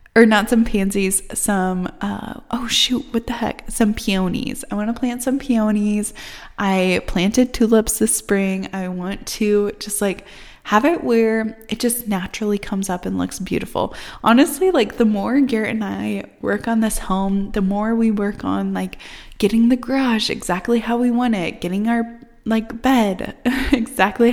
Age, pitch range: 20-39, 195-235 Hz